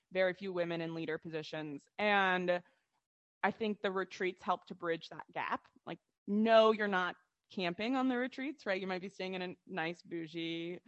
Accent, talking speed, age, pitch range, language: American, 180 wpm, 20-39, 170-210 Hz, English